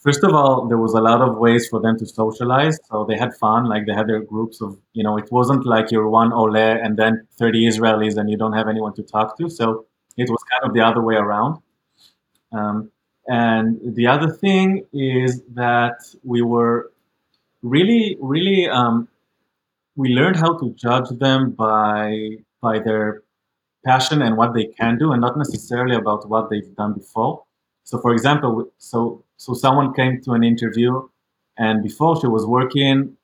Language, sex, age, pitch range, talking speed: English, male, 20-39, 110-125 Hz, 185 wpm